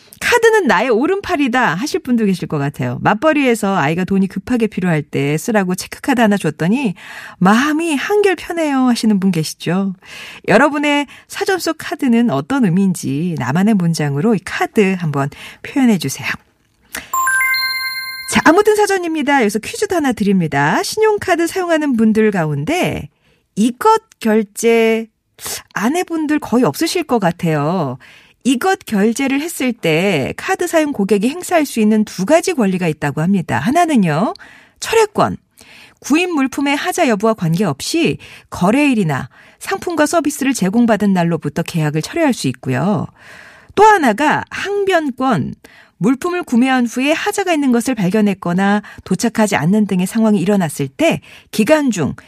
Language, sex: Korean, female